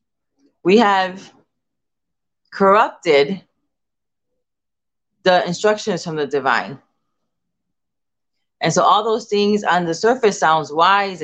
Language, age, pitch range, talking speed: English, 30-49, 155-200 Hz, 95 wpm